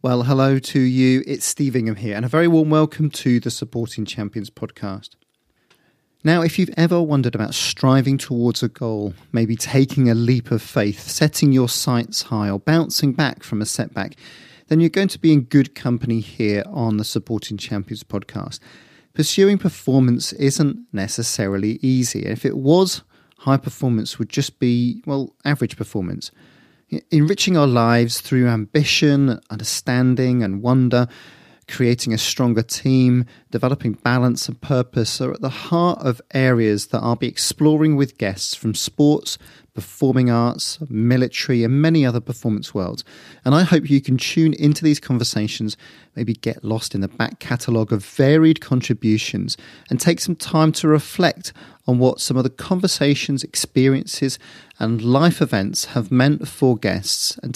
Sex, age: male, 40-59